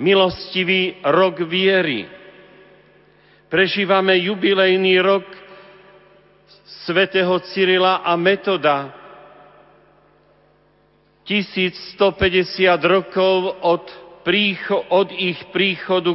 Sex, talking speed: male, 65 wpm